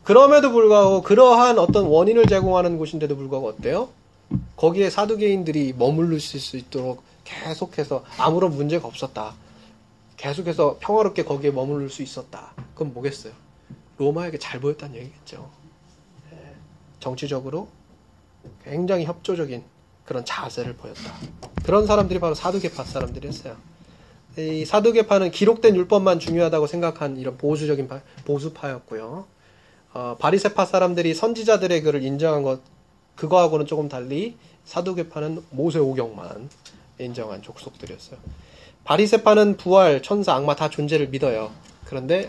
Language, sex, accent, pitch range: Korean, male, native, 135-185 Hz